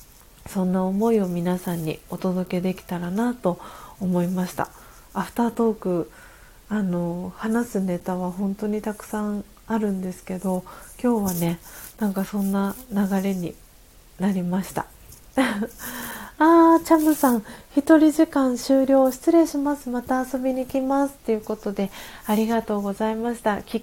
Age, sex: 40-59, female